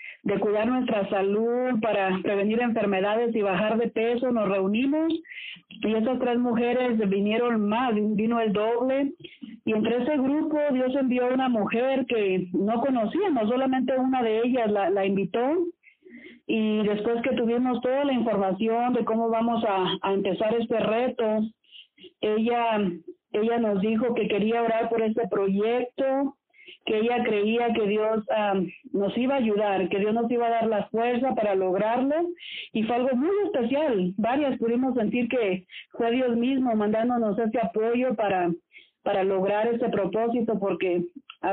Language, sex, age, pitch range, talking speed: Spanish, female, 40-59, 210-250 Hz, 160 wpm